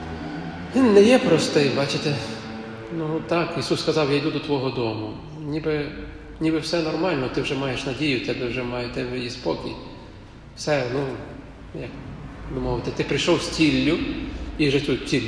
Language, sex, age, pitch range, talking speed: Ukrainian, male, 40-59, 120-150 Hz, 155 wpm